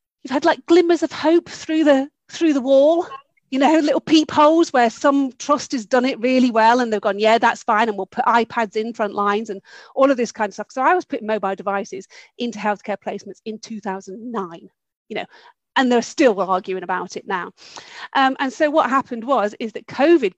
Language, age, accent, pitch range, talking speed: English, 40-59, British, 205-295 Hz, 210 wpm